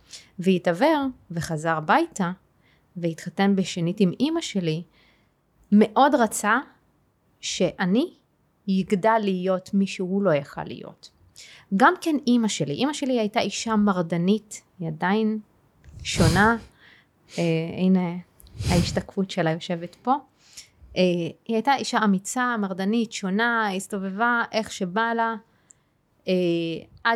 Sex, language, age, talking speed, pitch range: female, Hebrew, 30-49, 105 wpm, 180-235 Hz